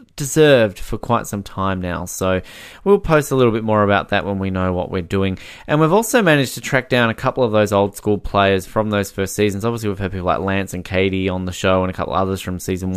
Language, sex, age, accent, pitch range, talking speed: English, male, 20-39, Australian, 95-130 Hz, 260 wpm